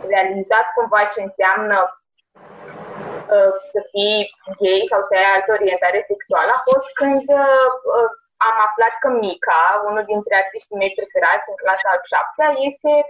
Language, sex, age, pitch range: Romanian, female, 20-39, 210-285 Hz